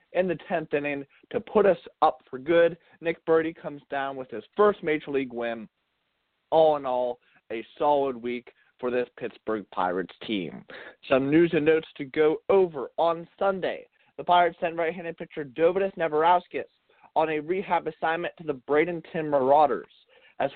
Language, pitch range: English, 135-170 Hz